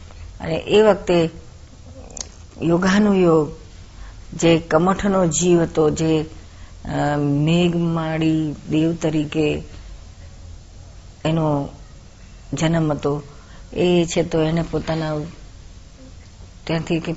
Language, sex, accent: Gujarati, female, native